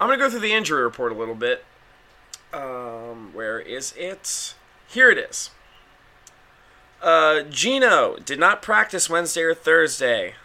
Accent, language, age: American, English, 20-39